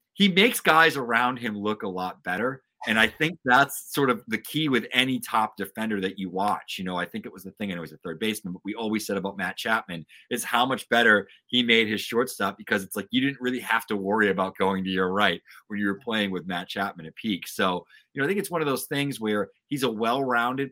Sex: male